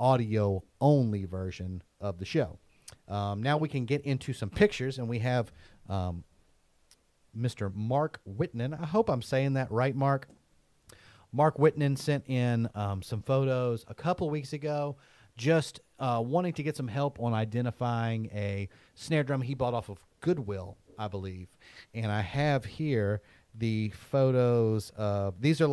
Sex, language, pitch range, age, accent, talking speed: male, English, 100-130 Hz, 30-49, American, 155 wpm